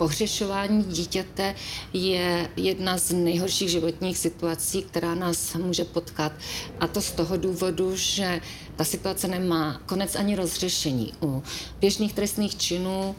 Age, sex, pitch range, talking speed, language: 40-59, female, 165-185 Hz, 125 wpm, Czech